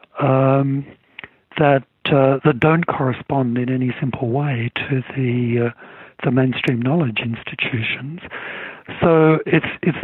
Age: 60-79